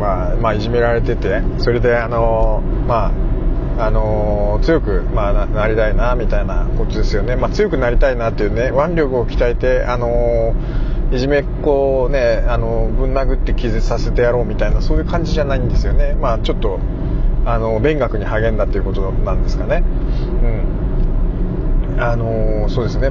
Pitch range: 110-130 Hz